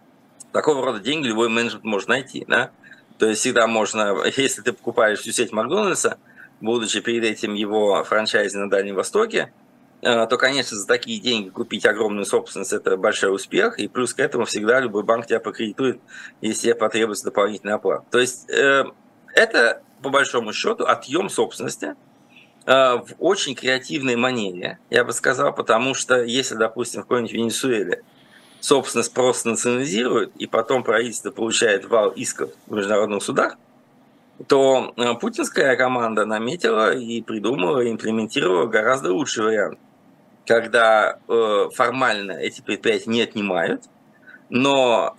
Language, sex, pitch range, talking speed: Russian, male, 110-125 Hz, 135 wpm